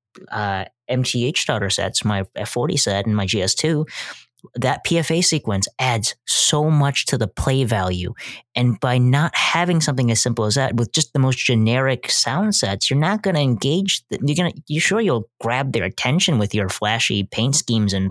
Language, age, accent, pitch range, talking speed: English, 20-39, American, 115-145 Hz, 185 wpm